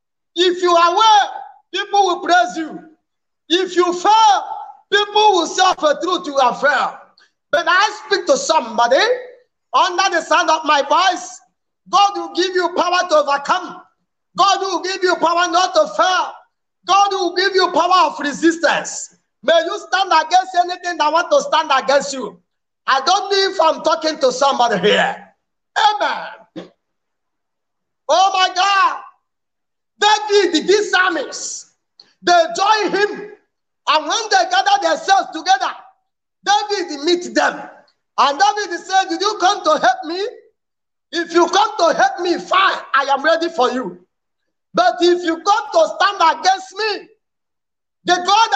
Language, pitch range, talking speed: English, 315-390 Hz, 150 wpm